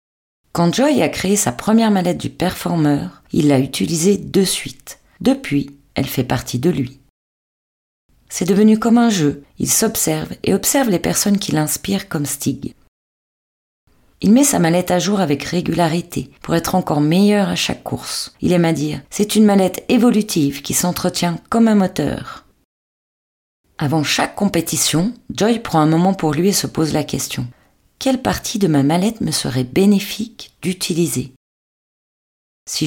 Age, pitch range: 40-59, 145-205 Hz